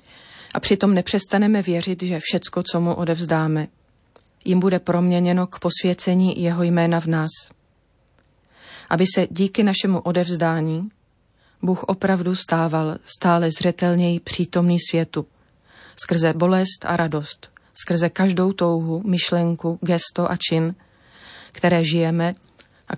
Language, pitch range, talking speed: Slovak, 165-185 Hz, 115 wpm